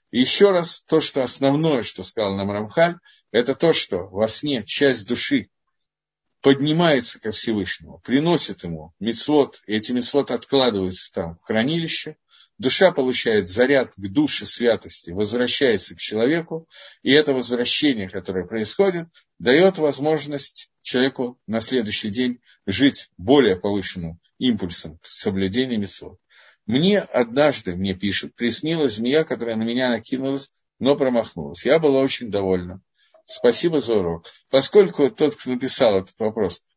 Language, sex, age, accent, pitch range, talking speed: Russian, male, 50-69, native, 110-155 Hz, 130 wpm